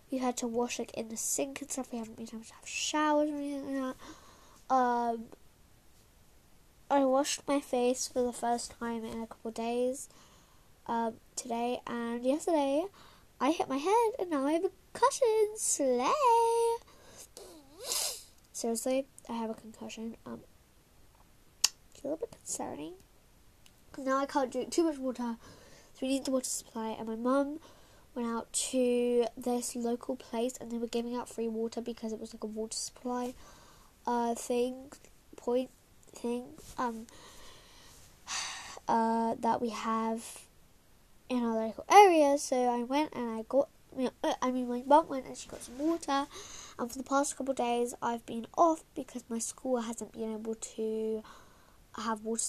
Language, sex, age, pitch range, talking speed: English, female, 10-29, 230-275 Hz, 165 wpm